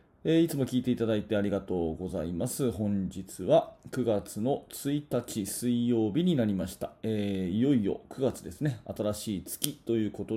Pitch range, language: 100-135 Hz, Japanese